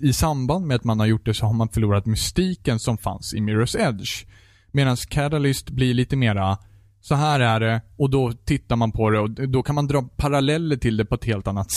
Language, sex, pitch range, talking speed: Swedish, male, 105-140 Hz, 230 wpm